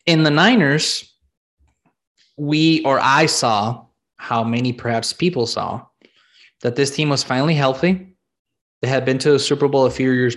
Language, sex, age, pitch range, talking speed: English, male, 20-39, 115-150 Hz, 160 wpm